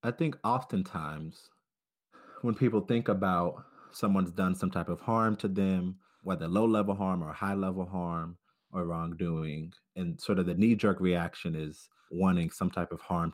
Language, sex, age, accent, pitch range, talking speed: English, male, 30-49, American, 85-100 Hz, 160 wpm